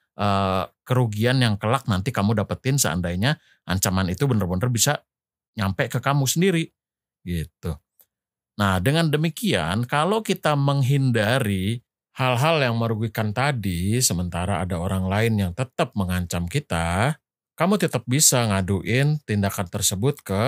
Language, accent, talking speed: Indonesian, native, 125 wpm